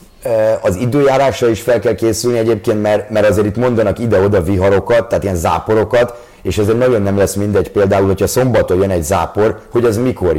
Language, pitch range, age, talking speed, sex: Hungarian, 100-120 Hz, 30-49, 180 wpm, male